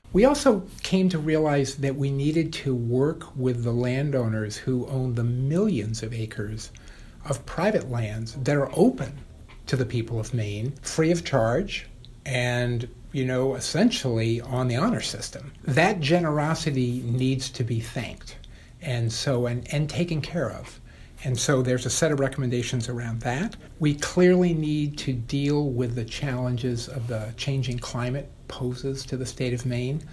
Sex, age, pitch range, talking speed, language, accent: male, 50-69, 120-145 Hz, 160 wpm, English, American